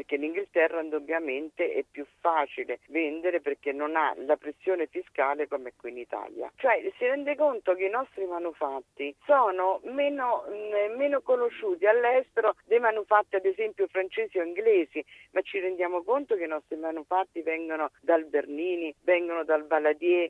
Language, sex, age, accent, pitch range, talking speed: Italian, female, 50-69, native, 150-235 Hz, 150 wpm